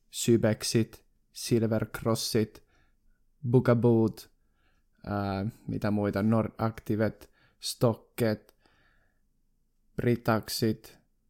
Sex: male